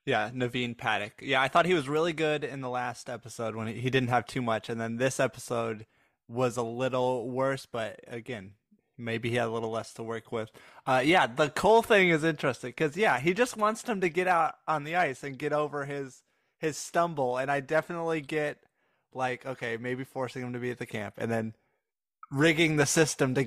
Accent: American